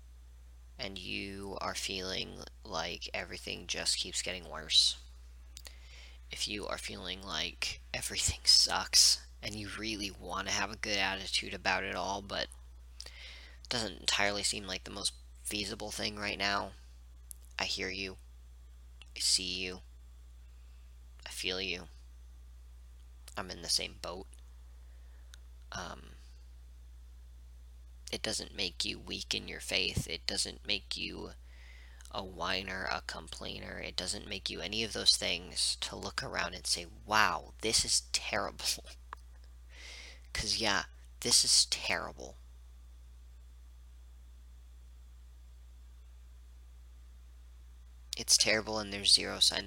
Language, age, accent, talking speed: English, 20-39, American, 120 wpm